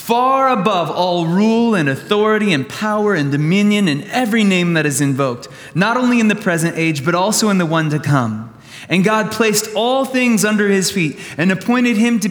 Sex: male